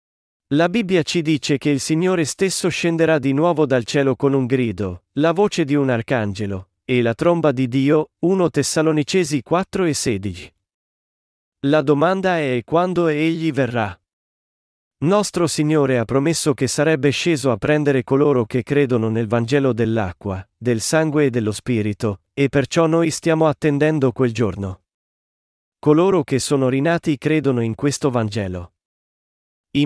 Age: 40-59